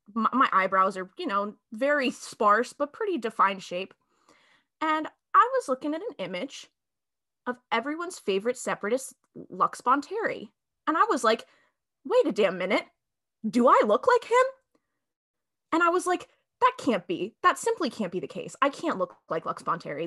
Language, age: English, 20-39